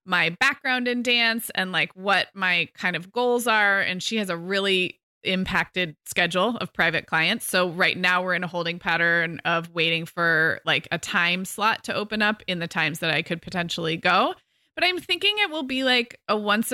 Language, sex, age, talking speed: English, female, 20-39, 205 wpm